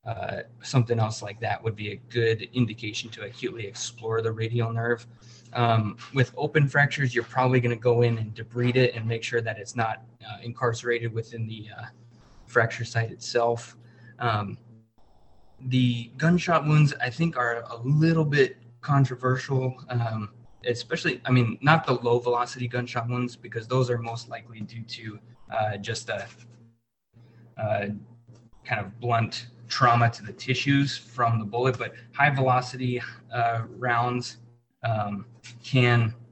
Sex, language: male, English